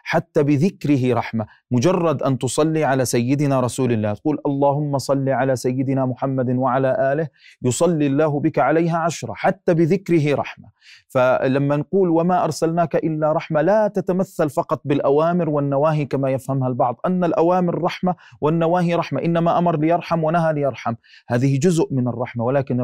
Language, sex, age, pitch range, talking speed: Arabic, male, 40-59, 125-160 Hz, 145 wpm